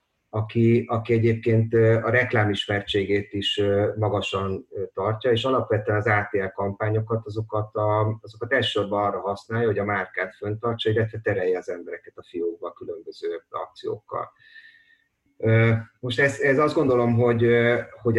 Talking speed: 125 wpm